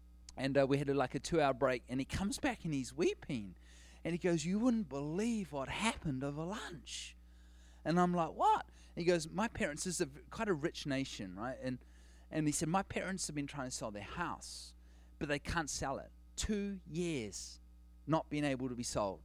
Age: 30-49